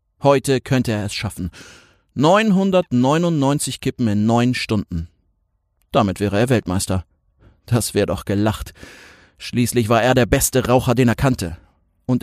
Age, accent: 30-49, German